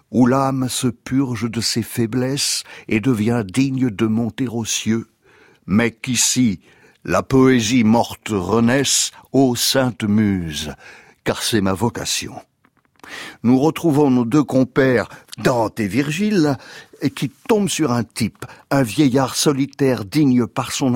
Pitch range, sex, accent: 120-140 Hz, male, French